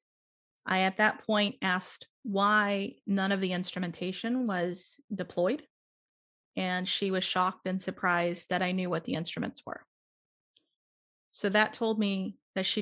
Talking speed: 145 wpm